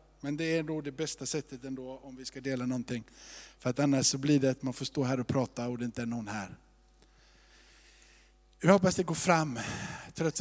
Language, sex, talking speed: Swedish, male, 225 wpm